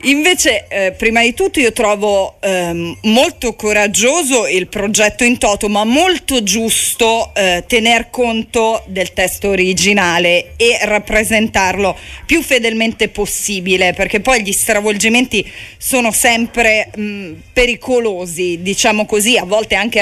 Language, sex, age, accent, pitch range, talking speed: Italian, female, 40-59, native, 205-245 Hz, 120 wpm